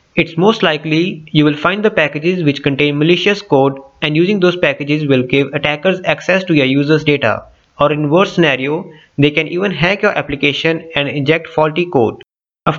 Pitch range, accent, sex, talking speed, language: 130-170 Hz, Indian, male, 185 wpm, English